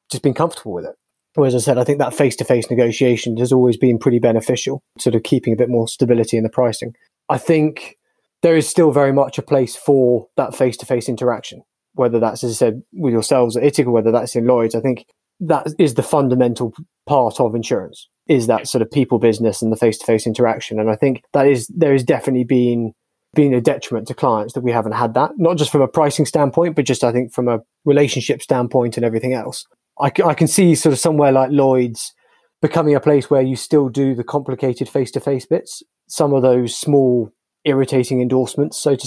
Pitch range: 115-140 Hz